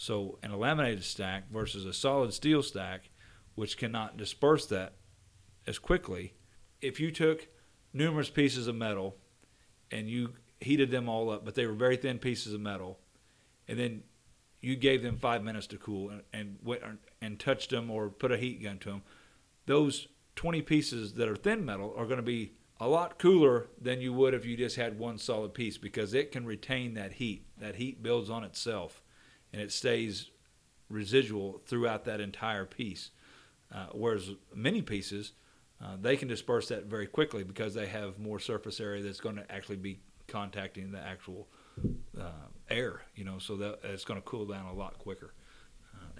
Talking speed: 180 wpm